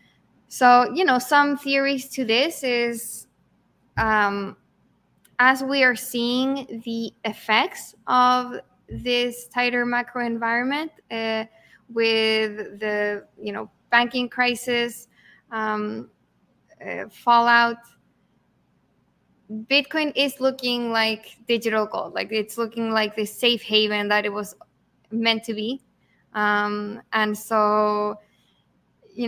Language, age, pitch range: English, 10-29, 215-245 Hz